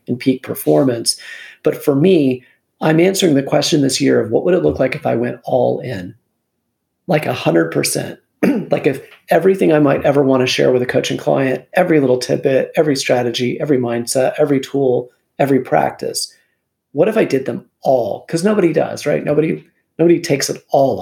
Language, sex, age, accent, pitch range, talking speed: English, male, 40-59, American, 120-145 Hz, 190 wpm